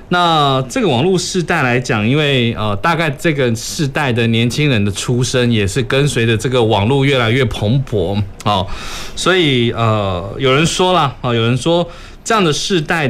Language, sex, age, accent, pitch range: Chinese, male, 20-39, native, 110-150 Hz